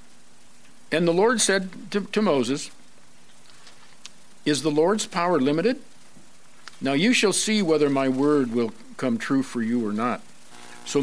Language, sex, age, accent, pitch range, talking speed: English, male, 60-79, American, 120-170 Hz, 145 wpm